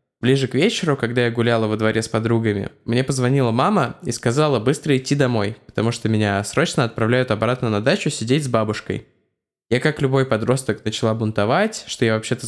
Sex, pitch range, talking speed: male, 110-140 Hz, 185 wpm